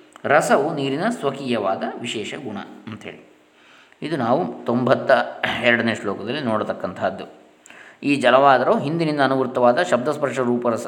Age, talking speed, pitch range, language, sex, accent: 20-39, 100 wpm, 120-145 Hz, Kannada, male, native